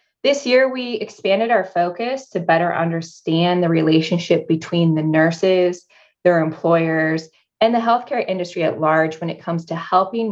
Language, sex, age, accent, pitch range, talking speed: English, female, 20-39, American, 160-200 Hz, 155 wpm